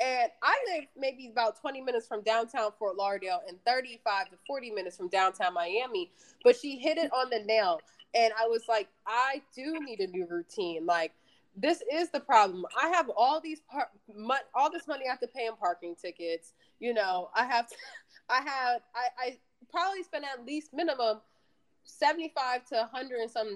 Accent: American